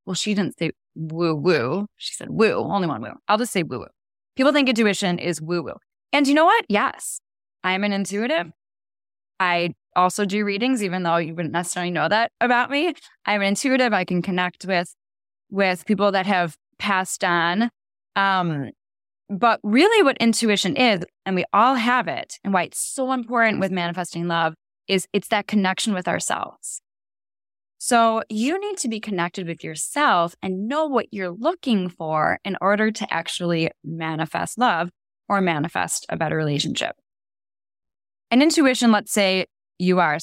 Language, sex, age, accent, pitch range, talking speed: English, female, 10-29, American, 170-230 Hz, 165 wpm